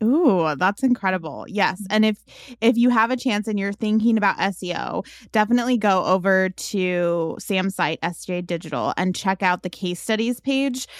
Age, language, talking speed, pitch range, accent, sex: 20-39, English, 170 wpm, 175-220 Hz, American, female